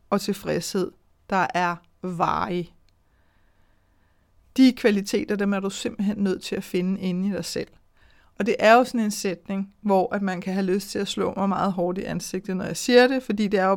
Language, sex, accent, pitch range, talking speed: Danish, female, native, 185-220 Hz, 210 wpm